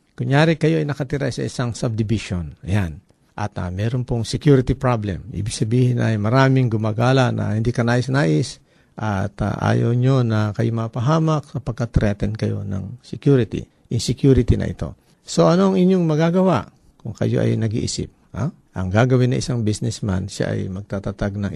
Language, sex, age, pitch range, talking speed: Filipino, male, 50-69, 105-140 Hz, 155 wpm